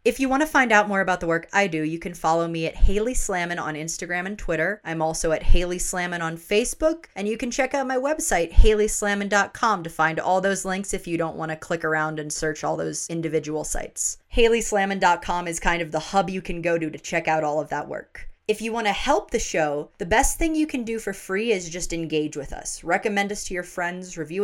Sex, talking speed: female, 245 wpm